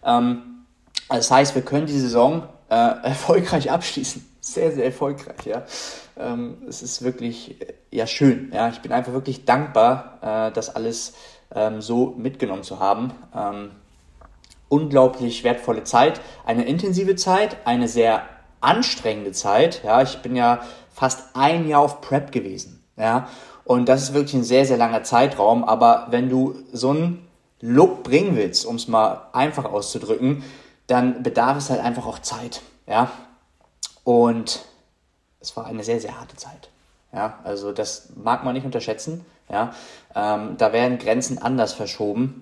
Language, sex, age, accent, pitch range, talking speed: German, male, 30-49, German, 115-140 Hz, 150 wpm